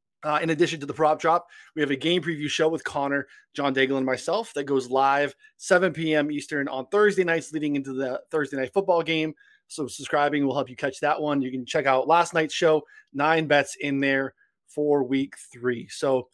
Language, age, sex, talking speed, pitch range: English, 20-39, male, 215 wpm, 140-175 Hz